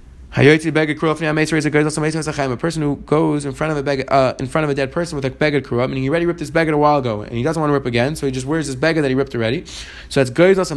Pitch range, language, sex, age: 130-165 Hz, English, male, 20-39